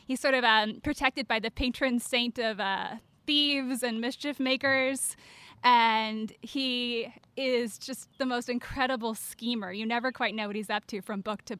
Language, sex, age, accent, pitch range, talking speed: English, female, 10-29, American, 220-265 Hz, 175 wpm